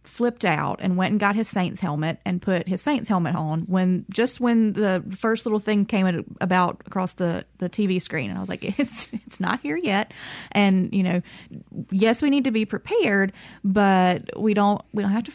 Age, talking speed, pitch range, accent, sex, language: 20-39, 210 wpm, 185-225 Hz, American, female, English